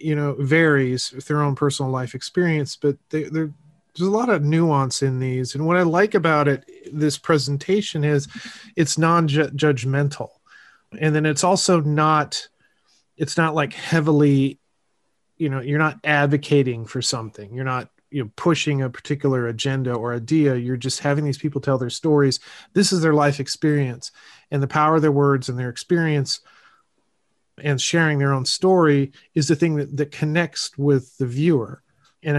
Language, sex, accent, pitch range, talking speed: English, male, American, 135-155 Hz, 170 wpm